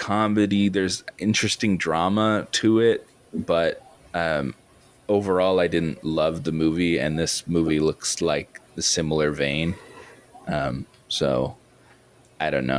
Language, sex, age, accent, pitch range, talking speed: English, male, 20-39, American, 75-100 Hz, 125 wpm